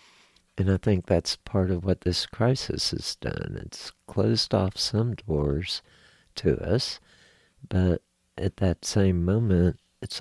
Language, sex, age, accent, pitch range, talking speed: English, male, 50-69, American, 85-110 Hz, 140 wpm